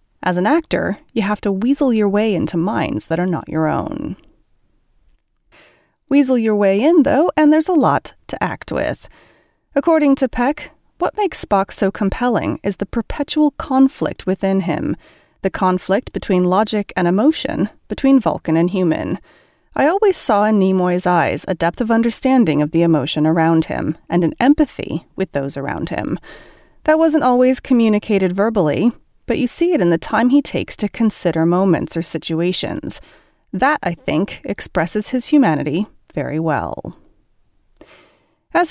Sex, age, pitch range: female, 30-49, 170-275 Hz